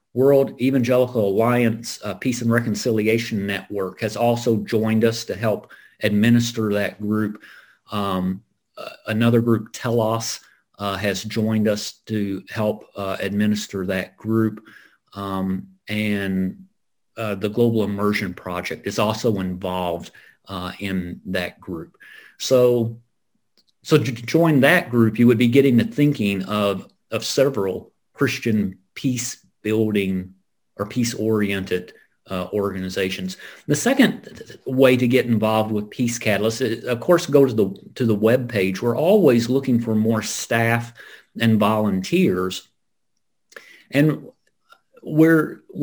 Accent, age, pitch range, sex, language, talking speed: American, 40-59, 105-125 Hz, male, English, 130 wpm